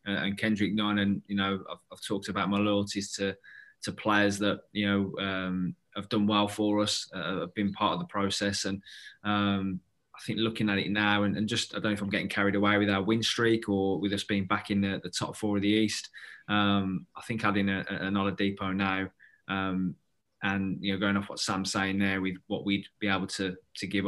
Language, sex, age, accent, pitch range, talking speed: English, male, 20-39, British, 95-105 Hz, 235 wpm